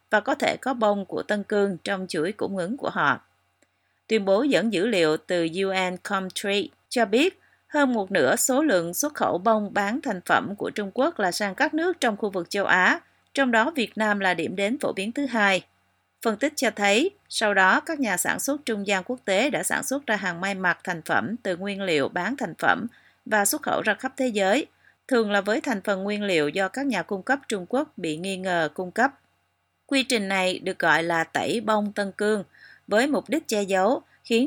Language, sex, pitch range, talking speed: Vietnamese, female, 185-235 Hz, 225 wpm